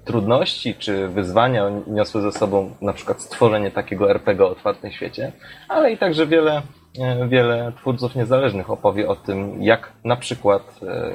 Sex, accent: male, native